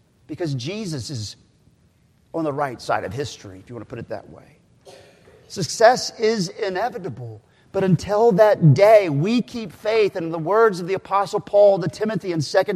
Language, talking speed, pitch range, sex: English, 185 wpm, 150-220 Hz, male